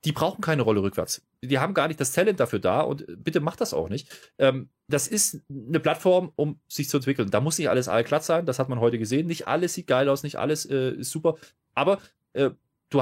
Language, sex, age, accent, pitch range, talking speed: German, male, 30-49, German, 135-195 Hz, 225 wpm